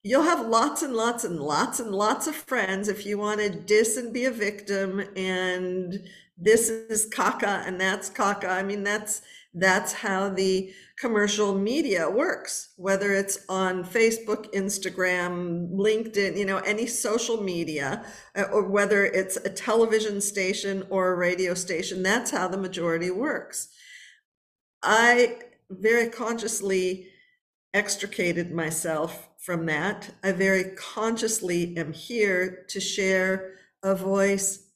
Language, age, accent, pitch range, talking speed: English, 50-69, American, 185-220 Hz, 135 wpm